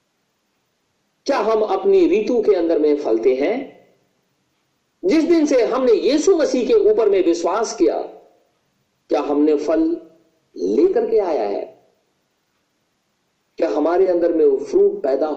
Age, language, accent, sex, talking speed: 50-69, Hindi, native, male, 135 wpm